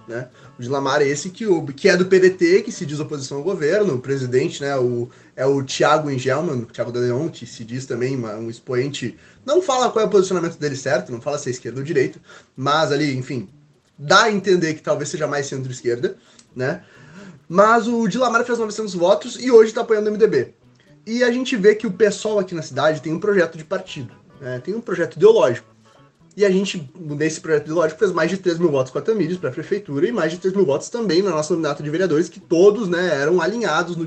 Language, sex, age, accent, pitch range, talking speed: Portuguese, male, 20-39, Brazilian, 140-195 Hz, 225 wpm